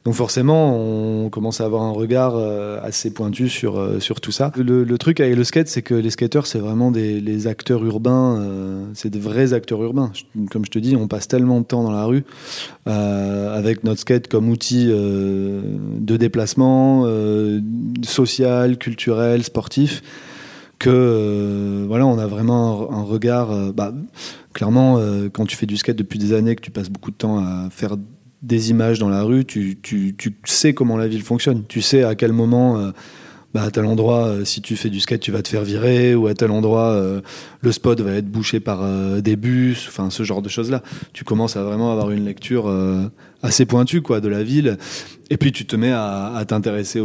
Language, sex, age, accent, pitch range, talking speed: French, male, 20-39, French, 105-125 Hz, 210 wpm